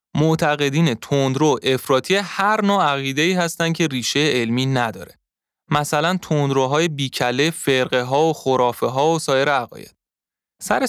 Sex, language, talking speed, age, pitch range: male, Persian, 140 wpm, 20-39, 125-170 Hz